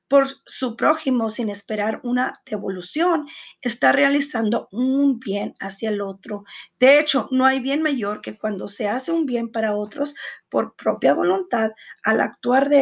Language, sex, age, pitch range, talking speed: Spanish, female, 40-59, 225-285 Hz, 160 wpm